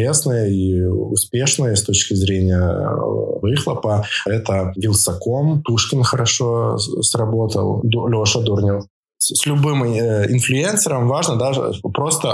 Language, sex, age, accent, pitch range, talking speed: Russian, male, 20-39, native, 95-125 Hz, 110 wpm